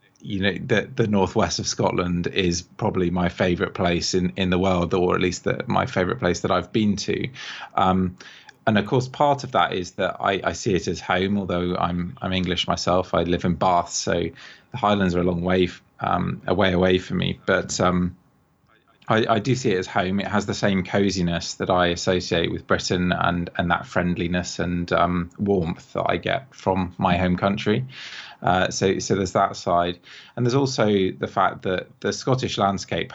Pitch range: 90-100 Hz